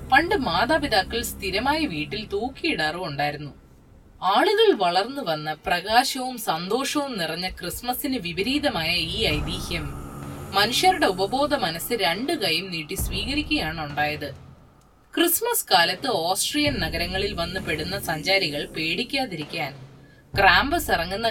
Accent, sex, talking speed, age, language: native, female, 85 wpm, 20-39, Malayalam